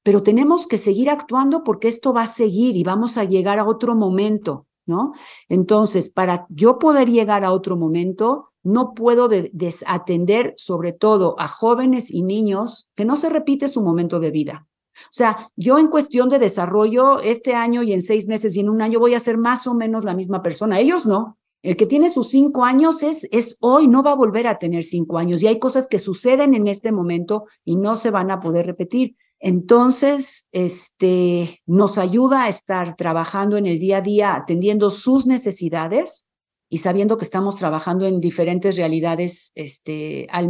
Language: Spanish